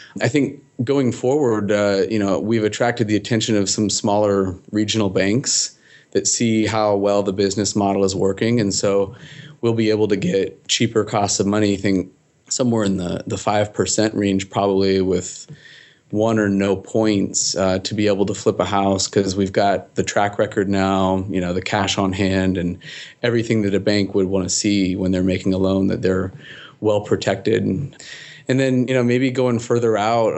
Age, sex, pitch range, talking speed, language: 30-49, male, 95-110 Hz, 195 wpm, English